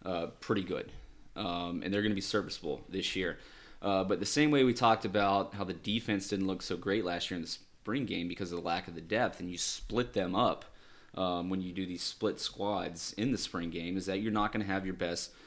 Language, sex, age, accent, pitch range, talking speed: English, male, 20-39, American, 90-105 Hz, 250 wpm